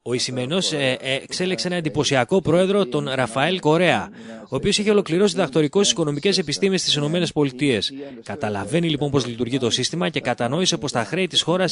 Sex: male